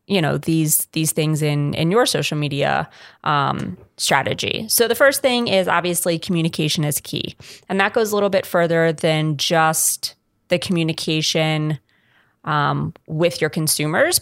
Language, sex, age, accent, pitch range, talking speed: English, female, 20-39, American, 155-180 Hz, 150 wpm